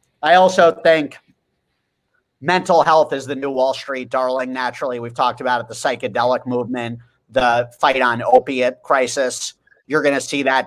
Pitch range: 125-145 Hz